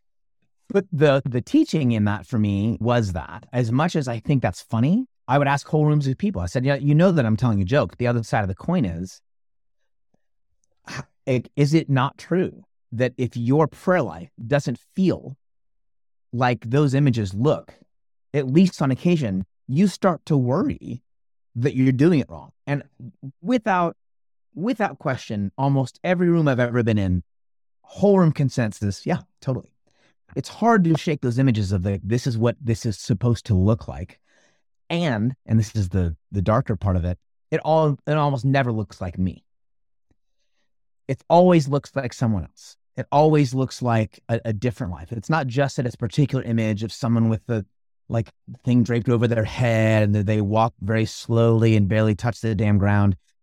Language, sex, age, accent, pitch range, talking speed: English, male, 30-49, American, 110-145 Hz, 185 wpm